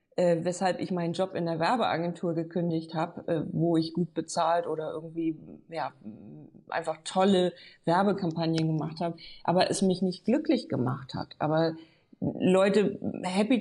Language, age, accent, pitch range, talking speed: German, 40-59, German, 165-190 Hz, 135 wpm